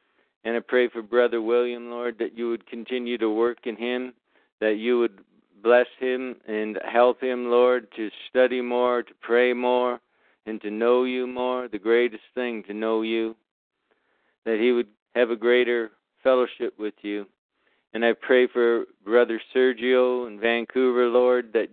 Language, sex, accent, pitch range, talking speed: English, male, American, 115-125 Hz, 165 wpm